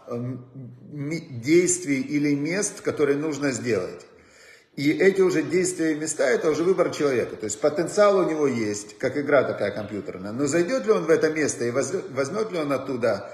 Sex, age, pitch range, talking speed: male, 40-59, 135-175 Hz, 180 wpm